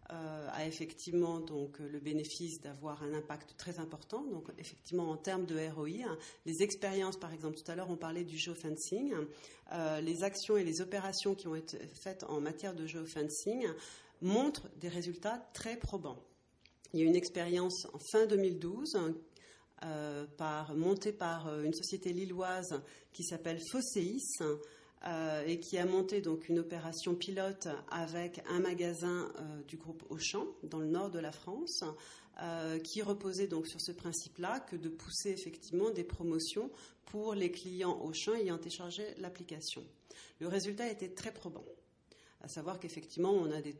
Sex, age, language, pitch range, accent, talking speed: female, 40-59, French, 155-185 Hz, French, 160 wpm